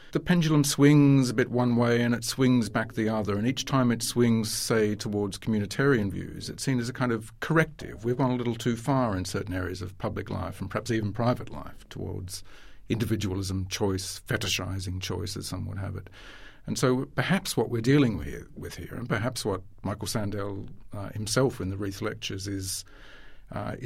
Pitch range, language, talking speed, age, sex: 100-125 Hz, English, 195 wpm, 50-69, male